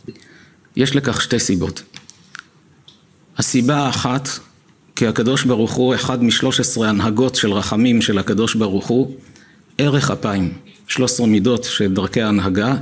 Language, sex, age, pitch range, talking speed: Hebrew, male, 50-69, 110-140 Hz, 130 wpm